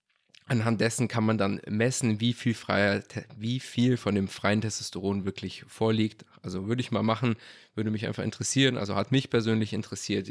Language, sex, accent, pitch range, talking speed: German, male, German, 100-120 Hz, 180 wpm